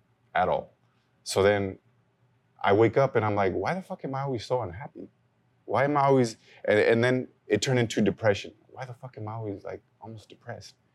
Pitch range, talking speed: 105-125 Hz, 210 wpm